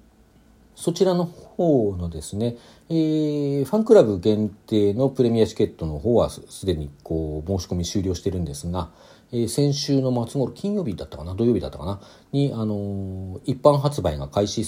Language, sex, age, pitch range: Japanese, male, 40-59, 85-120 Hz